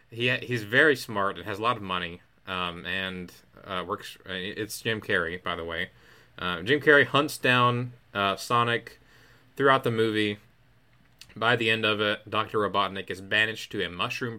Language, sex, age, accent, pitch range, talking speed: English, male, 20-39, American, 95-125 Hz, 175 wpm